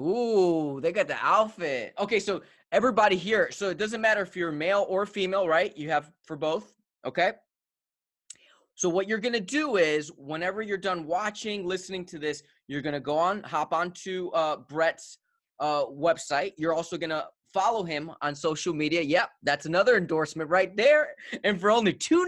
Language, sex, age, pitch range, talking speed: English, male, 20-39, 145-195 Hz, 185 wpm